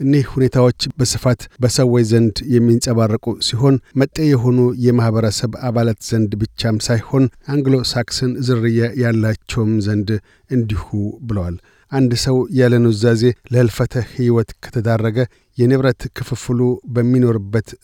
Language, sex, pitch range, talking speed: Amharic, male, 115-125 Hz, 105 wpm